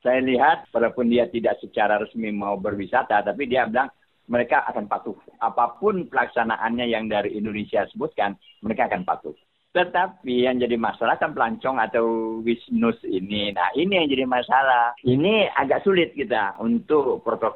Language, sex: Indonesian, male